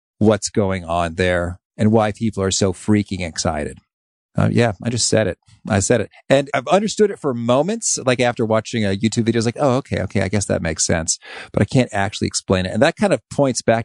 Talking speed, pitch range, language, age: 240 wpm, 95-125 Hz, English, 40-59